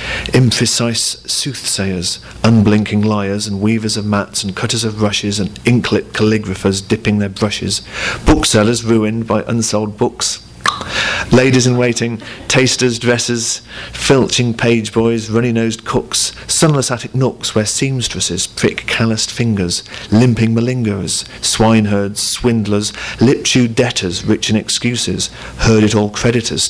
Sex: male